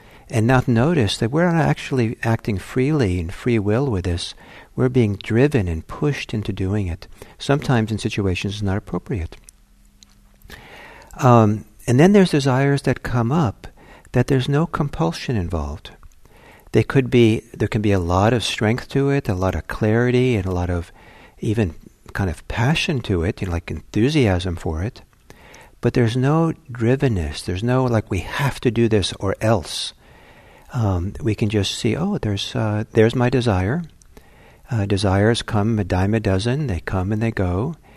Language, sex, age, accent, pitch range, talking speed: English, male, 60-79, American, 100-130 Hz, 165 wpm